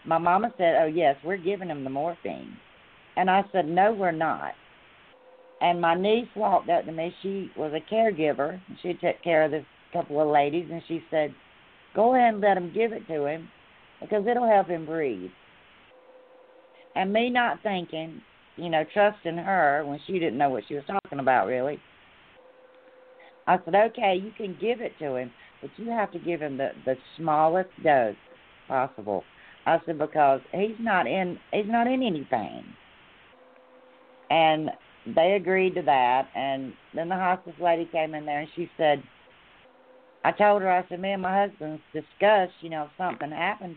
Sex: female